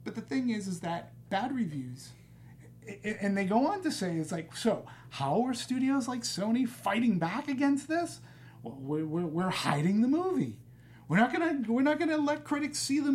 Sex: male